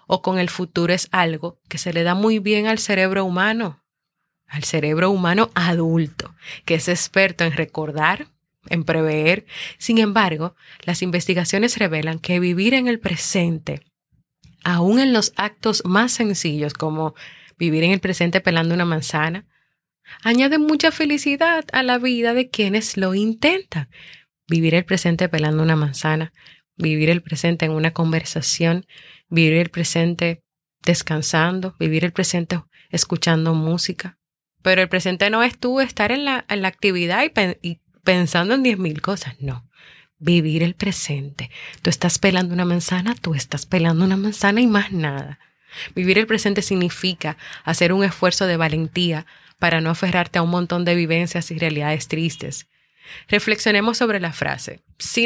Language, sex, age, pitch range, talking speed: Spanish, female, 20-39, 160-200 Hz, 155 wpm